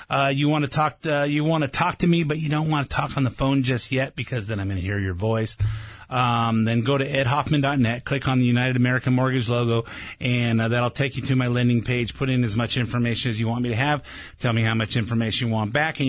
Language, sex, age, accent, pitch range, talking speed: English, male, 30-49, American, 120-150 Hz, 270 wpm